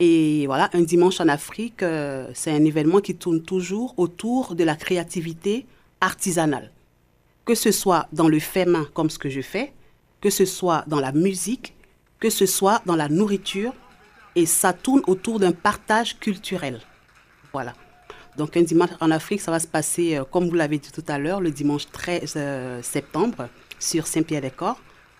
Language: French